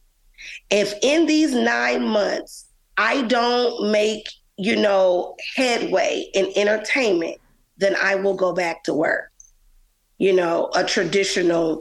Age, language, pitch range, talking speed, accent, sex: 30-49, English, 195-235 Hz, 120 wpm, American, female